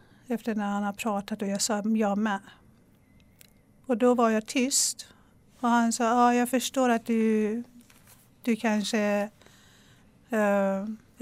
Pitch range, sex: 205-230 Hz, female